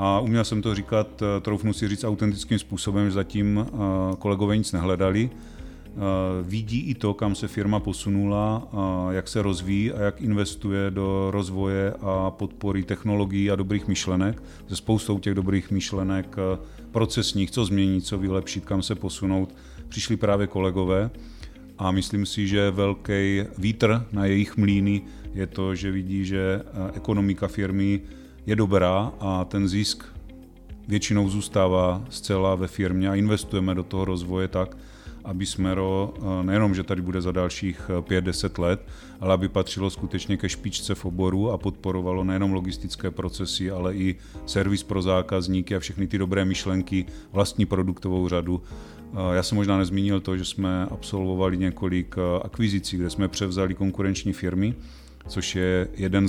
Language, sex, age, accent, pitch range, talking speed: Czech, male, 40-59, native, 95-100 Hz, 145 wpm